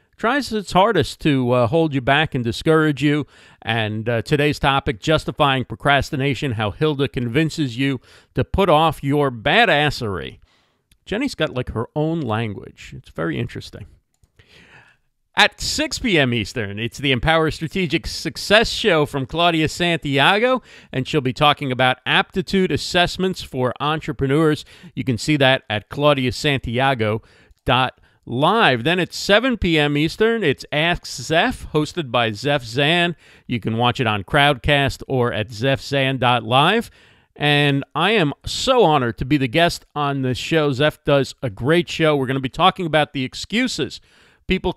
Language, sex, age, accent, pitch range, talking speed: English, male, 50-69, American, 125-160 Hz, 150 wpm